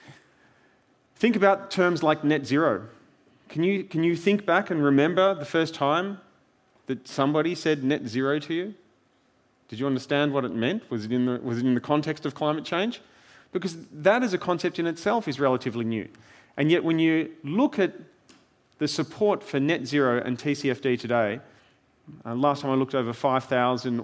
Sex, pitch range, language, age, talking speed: male, 120-160 Hz, English, 30-49, 170 wpm